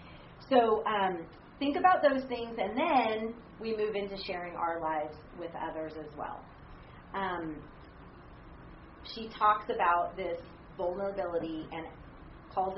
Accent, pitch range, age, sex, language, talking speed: American, 170-215 Hz, 40-59, female, English, 120 wpm